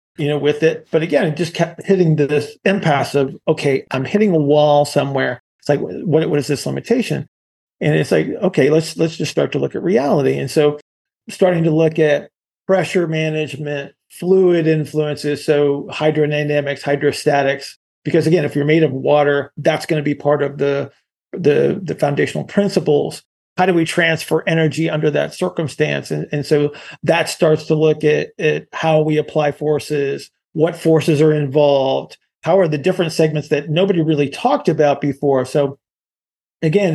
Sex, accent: male, American